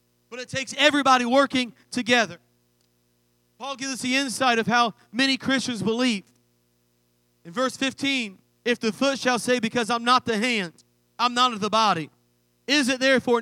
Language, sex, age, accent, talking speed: English, male, 40-59, American, 165 wpm